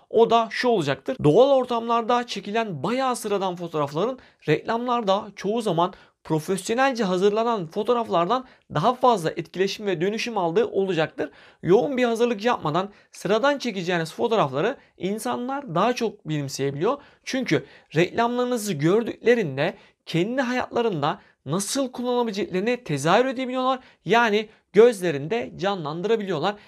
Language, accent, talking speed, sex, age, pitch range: Turkish, native, 105 wpm, male, 40-59, 175-240 Hz